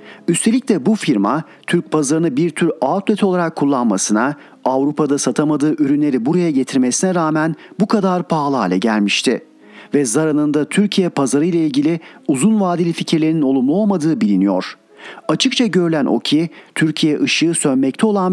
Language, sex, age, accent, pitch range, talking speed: Turkish, male, 40-59, native, 135-185 Hz, 140 wpm